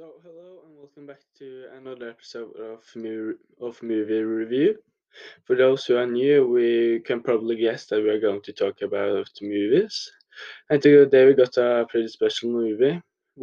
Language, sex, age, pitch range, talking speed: English, male, 20-39, 115-150 Hz, 165 wpm